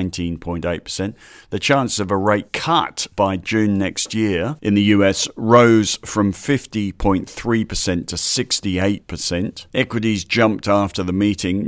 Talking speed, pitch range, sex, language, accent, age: 120 wpm, 90-105 Hz, male, English, British, 50-69